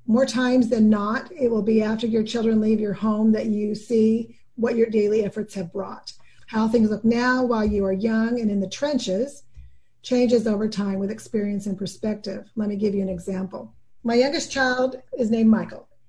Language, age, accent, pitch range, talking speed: English, 40-59, American, 200-245 Hz, 200 wpm